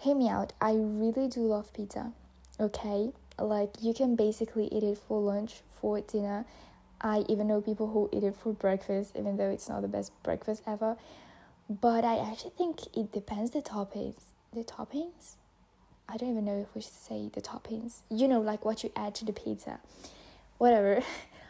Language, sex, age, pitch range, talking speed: English, female, 10-29, 205-240 Hz, 185 wpm